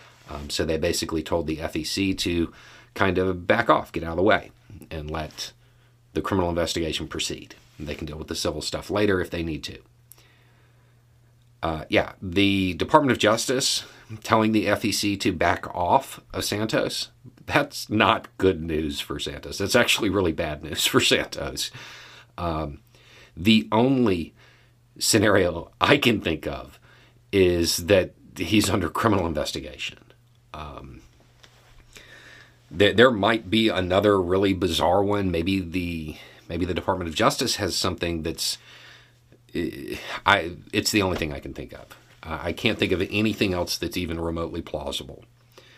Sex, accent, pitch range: male, American, 85-120 Hz